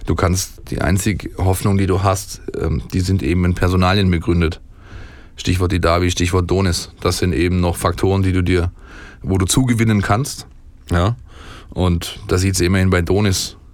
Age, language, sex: 20-39, German, male